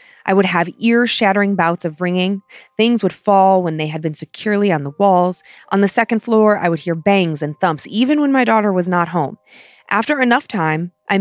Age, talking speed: 30-49, 210 wpm